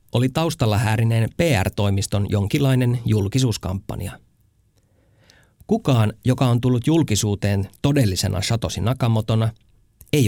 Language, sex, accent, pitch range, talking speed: Finnish, male, native, 100-130 Hz, 90 wpm